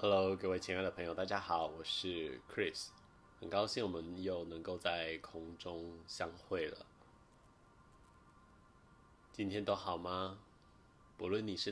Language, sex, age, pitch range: Chinese, male, 20-39, 80-95 Hz